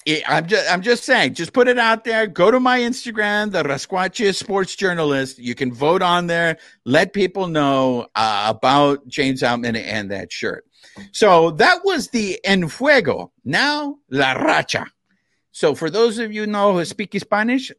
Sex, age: male, 50-69